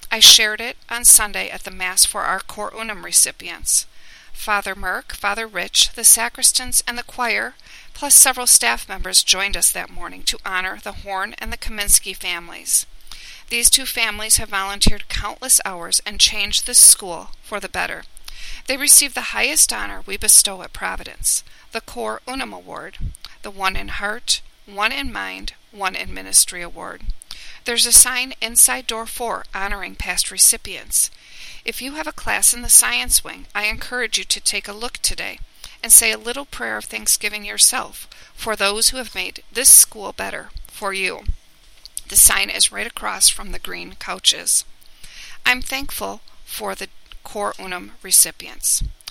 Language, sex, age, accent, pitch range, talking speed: English, female, 40-59, American, 195-250 Hz, 165 wpm